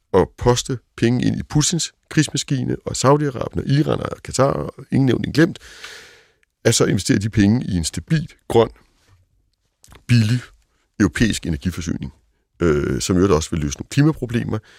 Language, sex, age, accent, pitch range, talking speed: Danish, male, 60-79, native, 110-170 Hz, 145 wpm